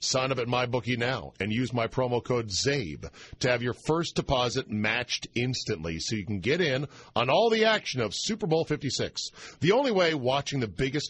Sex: male